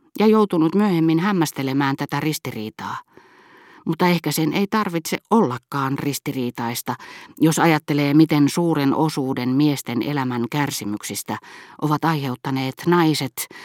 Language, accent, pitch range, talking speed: Finnish, native, 130-170 Hz, 105 wpm